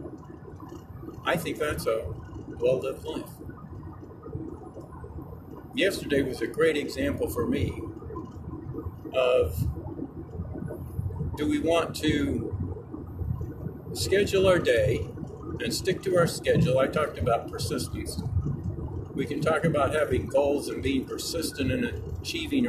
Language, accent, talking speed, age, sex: English, American, 110 wpm, 50-69, male